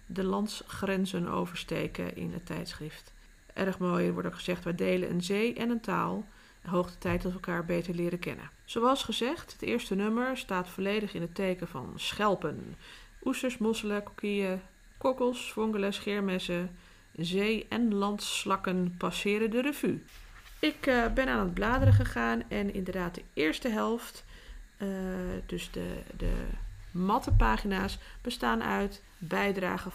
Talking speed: 145 wpm